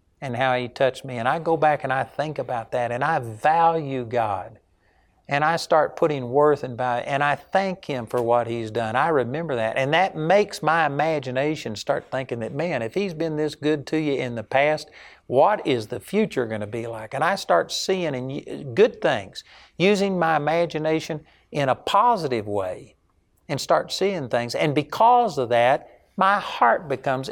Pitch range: 125-175 Hz